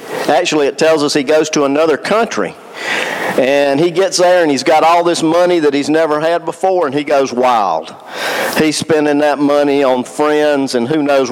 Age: 50-69